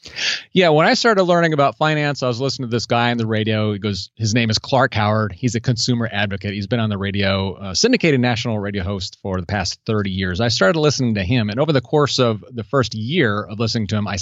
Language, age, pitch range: English, 30-49, 105-140 Hz